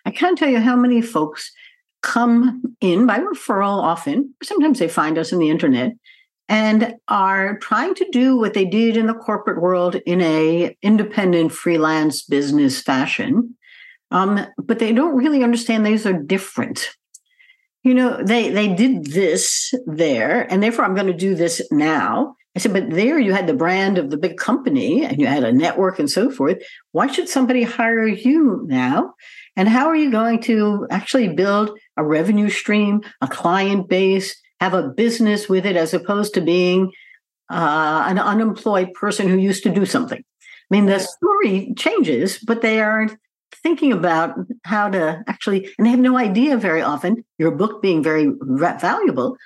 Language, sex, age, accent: English, female, 60-79, American